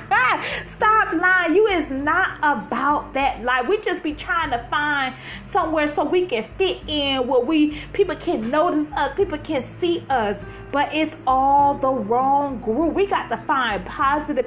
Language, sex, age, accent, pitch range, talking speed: English, female, 30-49, American, 200-315 Hz, 170 wpm